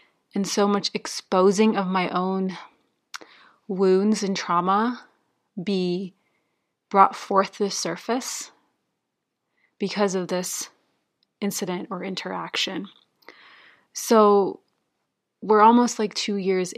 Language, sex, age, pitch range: English, female, 30-49, 180-215 Hz